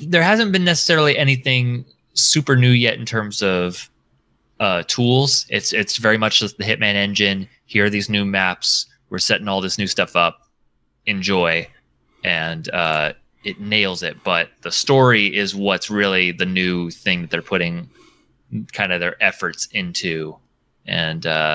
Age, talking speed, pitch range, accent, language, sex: 20-39, 160 wpm, 90-125 Hz, American, English, male